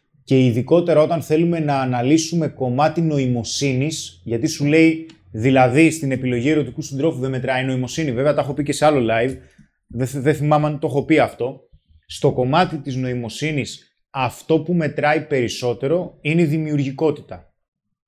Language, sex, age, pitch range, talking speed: Greek, male, 20-39, 130-160 Hz, 155 wpm